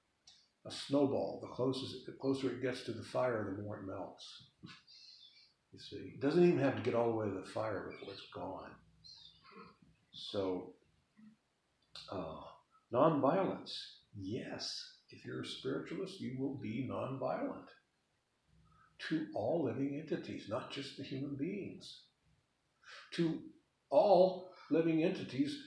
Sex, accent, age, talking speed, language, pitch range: male, American, 60-79, 130 wpm, English, 115-175 Hz